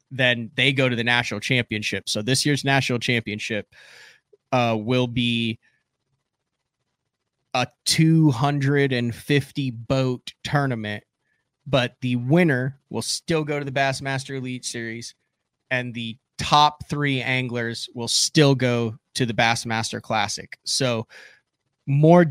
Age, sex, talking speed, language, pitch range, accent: 20-39, male, 120 wpm, English, 120-140 Hz, American